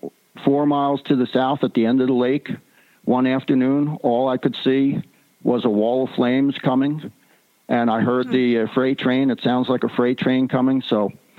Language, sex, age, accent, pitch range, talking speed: English, male, 50-69, American, 115-130 Hz, 200 wpm